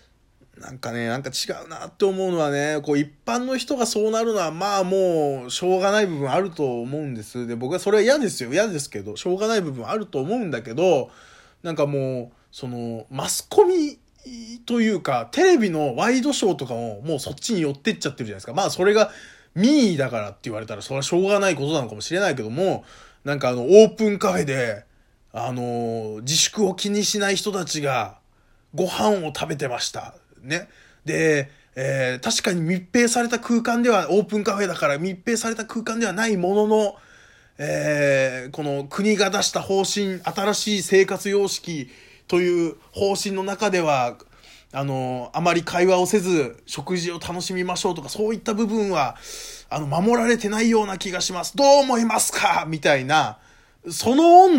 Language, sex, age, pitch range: Japanese, male, 20-39, 135-210 Hz